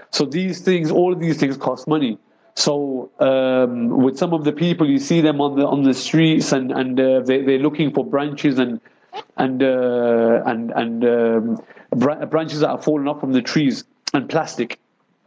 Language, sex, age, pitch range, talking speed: English, male, 30-49, 130-155 Hz, 190 wpm